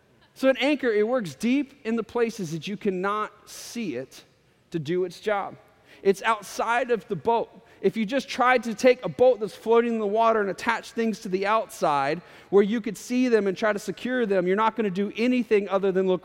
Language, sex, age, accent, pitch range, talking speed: English, male, 30-49, American, 185-235 Hz, 225 wpm